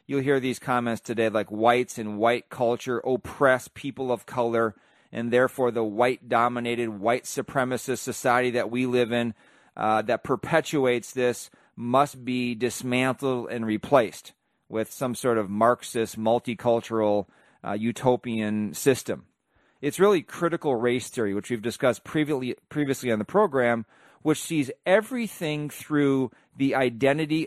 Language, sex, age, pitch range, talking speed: English, male, 30-49, 115-135 Hz, 135 wpm